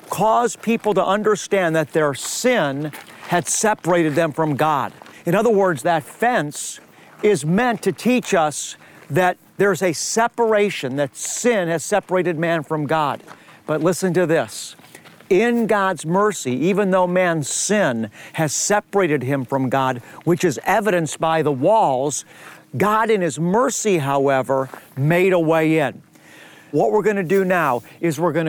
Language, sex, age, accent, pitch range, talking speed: English, male, 50-69, American, 155-195 Hz, 155 wpm